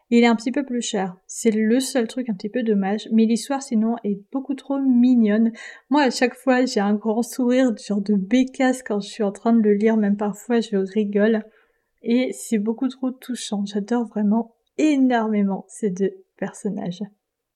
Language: French